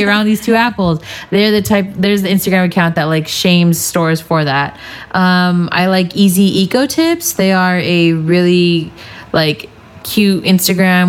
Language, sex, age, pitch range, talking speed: English, female, 20-39, 160-195 Hz, 160 wpm